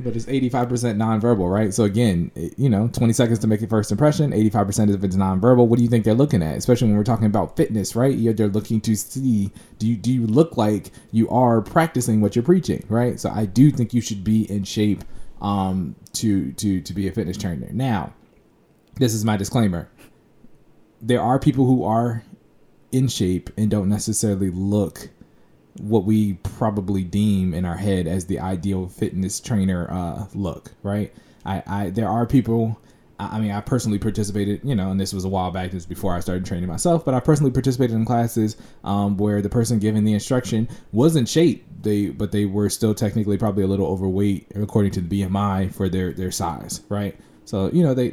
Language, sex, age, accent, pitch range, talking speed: English, male, 20-39, American, 95-115 Hz, 205 wpm